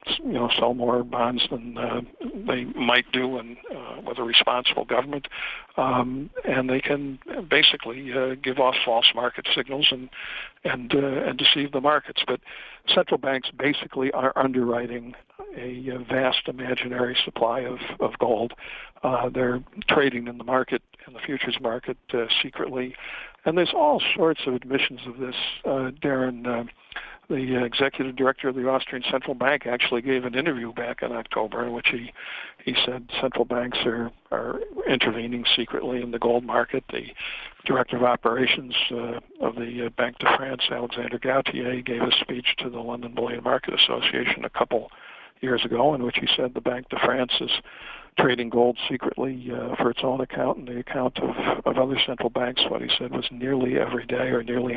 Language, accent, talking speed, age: English, American, 175 wpm, 60-79